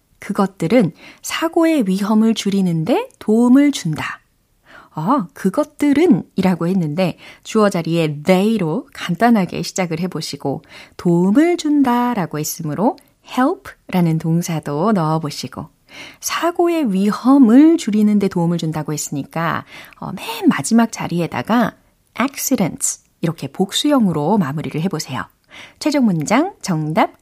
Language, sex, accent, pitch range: Korean, female, native, 160-270 Hz